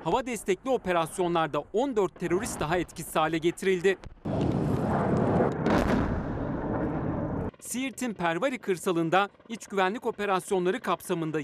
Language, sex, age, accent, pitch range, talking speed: Turkish, male, 40-59, native, 165-200 Hz, 85 wpm